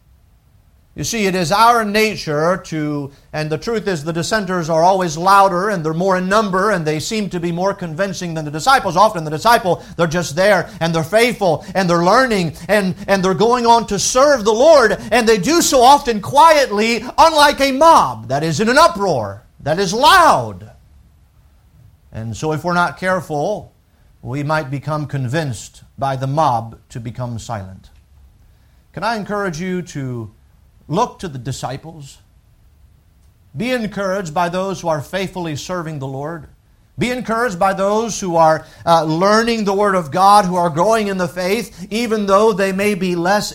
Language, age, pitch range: English, 50-69, 155-215 Hz